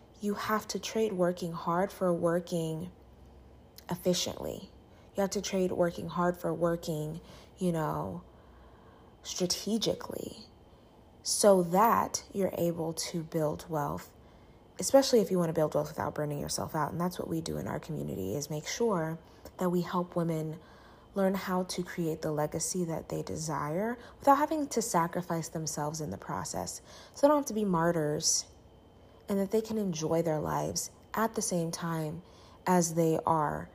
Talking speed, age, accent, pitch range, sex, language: 160 wpm, 20-39, American, 155-190 Hz, female, English